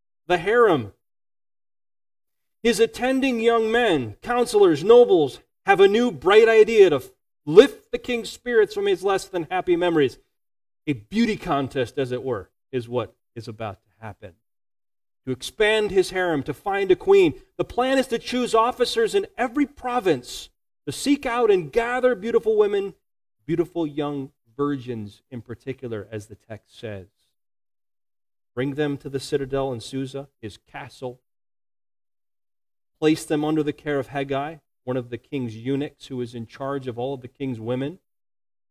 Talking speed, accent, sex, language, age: 155 wpm, American, male, English, 30-49